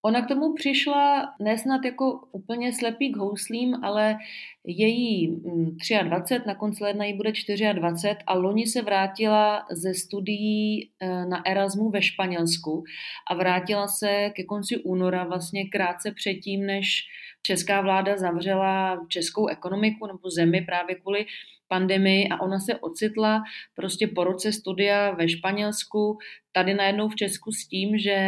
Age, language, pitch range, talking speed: 30-49, Czech, 180-210 Hz, 140 wpm